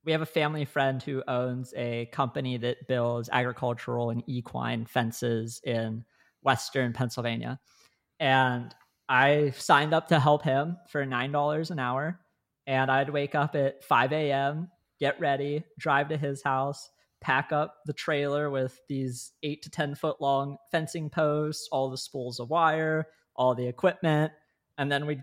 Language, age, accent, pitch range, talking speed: English, 20-39, American, 130-150 Hz, 155 wpm